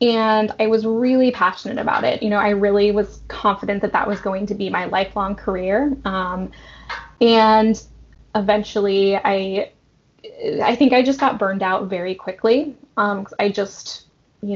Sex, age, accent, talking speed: female, 10-29, American, 160 wpm